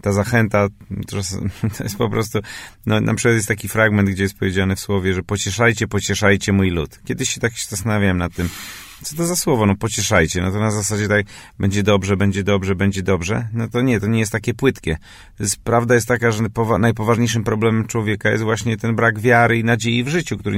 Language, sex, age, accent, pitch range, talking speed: Polish, male, 30-49, native, 100-115 Hz, 200 wpm